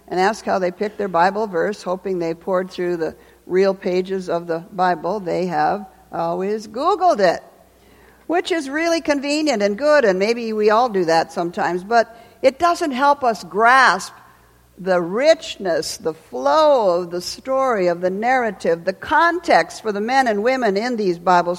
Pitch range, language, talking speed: 180-260 Hz, English, 170 wpm